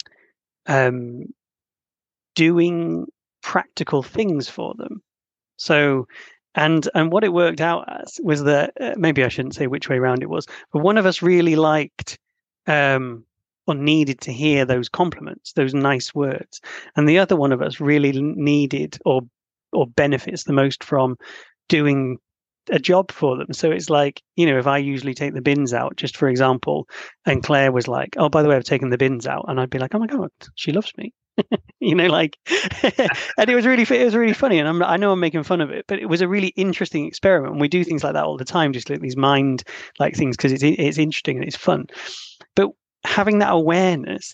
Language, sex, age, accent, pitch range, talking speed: English, male, 30-49, British, 135-170 Hz, 205 wpm